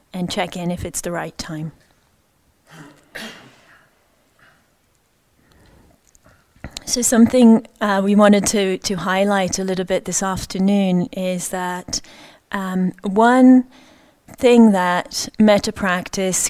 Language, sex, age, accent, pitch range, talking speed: English, female, 30-49, British, 170-200 Hz, 105 wpm